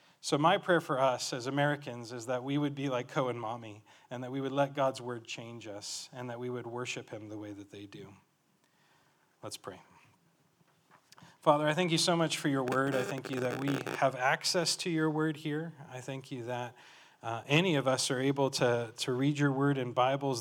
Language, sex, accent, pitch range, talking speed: English, male, American, 120-140 Hz, 220 wpm